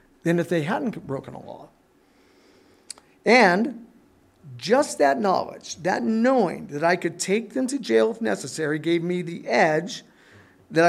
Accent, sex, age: American, male, 50-69